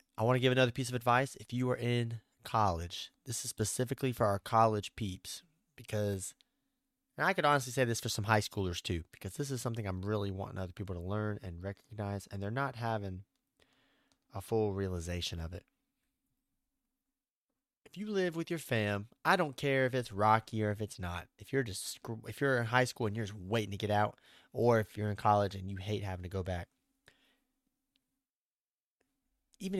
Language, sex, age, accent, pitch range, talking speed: English, male, 30-49, American, 100-140 Hz, 190 wpm